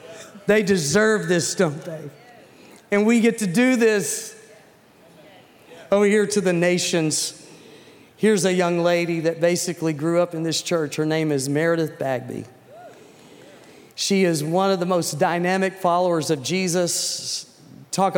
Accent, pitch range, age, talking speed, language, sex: American, 155-190 Hz, 40-59, 140 wpm, English, male